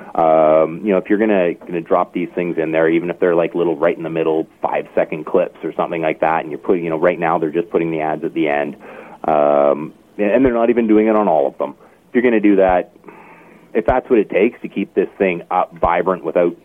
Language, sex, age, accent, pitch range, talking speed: English, male, 30-49, American, 75-100 Hz, 245 wpm